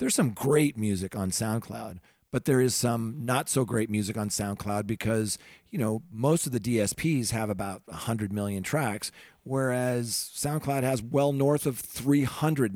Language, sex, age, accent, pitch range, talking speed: English, male, 40-59, American, 100-130 Hz, 165 wpm